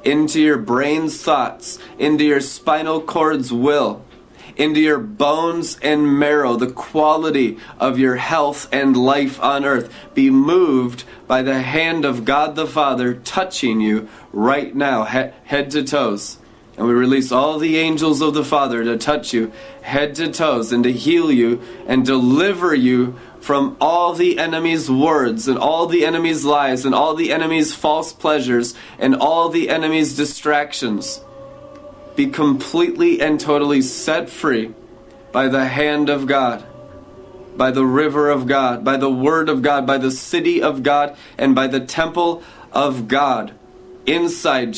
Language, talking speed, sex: English, 155 wpm, male